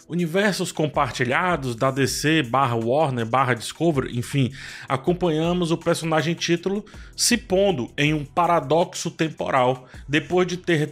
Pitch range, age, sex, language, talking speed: 135-180 Hz, 20-39, male, Portuguese, 115 wpm